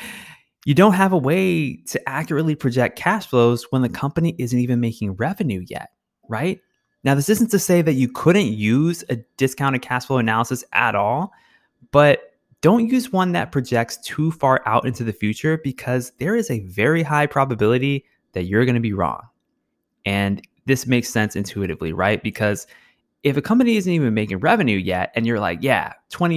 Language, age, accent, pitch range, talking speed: English, 20-39, American, 105-140 Hz, 180 wpm